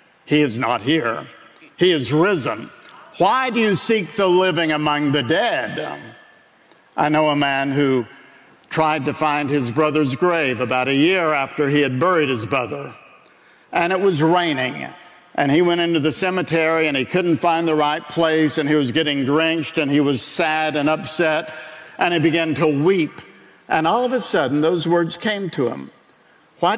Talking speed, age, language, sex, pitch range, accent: 180 wpm, 60-79, English, male, 145-175 Hz, American